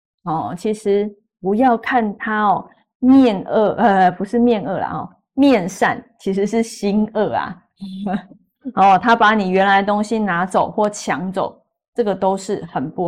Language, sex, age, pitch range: Chinese, female, 20-39, 195-245 Hz